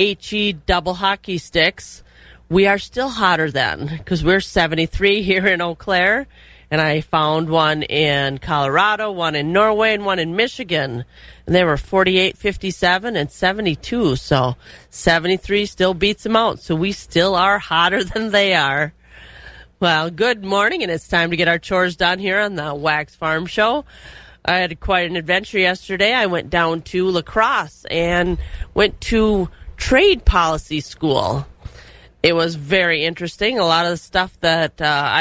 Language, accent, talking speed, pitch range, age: English, American, 160 wpm, 155-195 Hz, 30-49